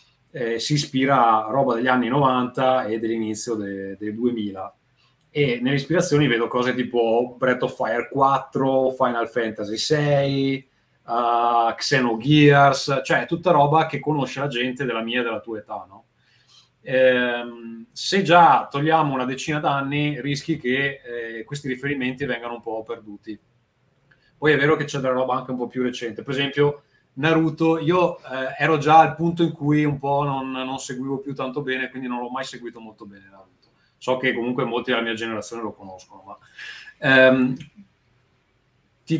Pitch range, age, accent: 120-145 Hz, 30-49, native